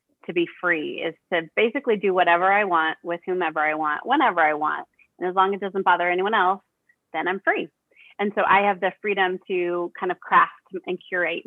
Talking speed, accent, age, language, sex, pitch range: 215 wpm, American, 30-49, English, female, 170-230 Hz